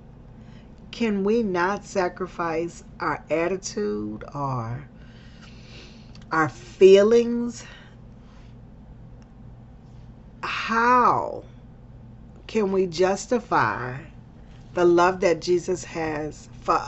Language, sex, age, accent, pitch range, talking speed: English, female, 40-59, American, 120-185 Hz, 70 wpm